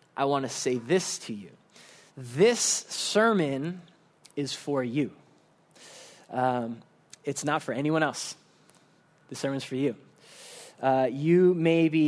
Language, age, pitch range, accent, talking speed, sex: English, 20-39, 150-230 Hz, American, 130 wpm, male